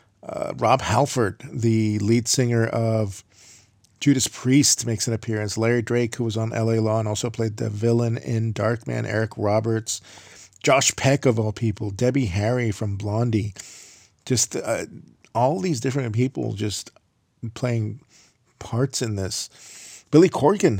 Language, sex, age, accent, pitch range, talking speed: English, male, 40-59, American, 105-120 Hz, 145 wpm